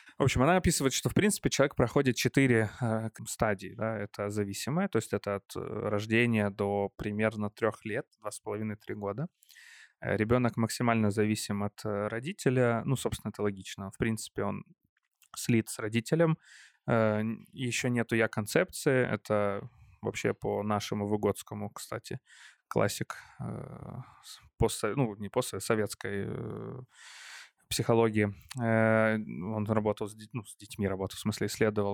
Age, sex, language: 20-39, male, Ukrainian